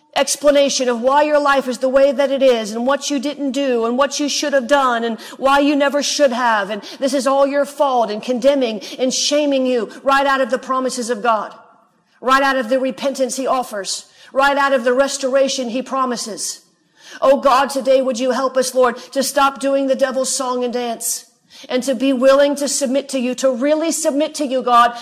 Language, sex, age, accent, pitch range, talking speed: English, female, 40-59, American, 250-285 Hz, 215 wpm